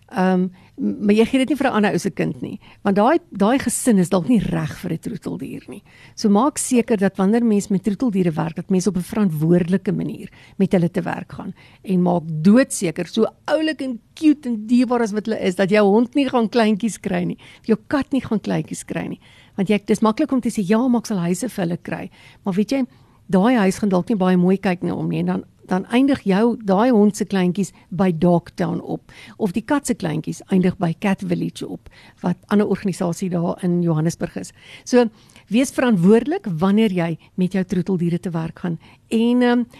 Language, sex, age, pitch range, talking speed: English, female, 50-69, 185-245 Hz, 215 wpm